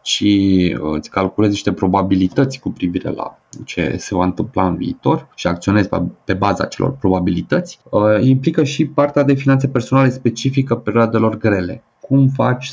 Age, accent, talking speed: 30-49, native, 145 wpm